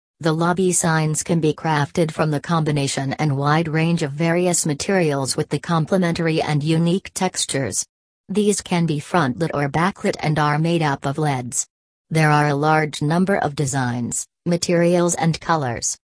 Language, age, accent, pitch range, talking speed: English, 40-59, American, 145-175 Hz, 160 wpm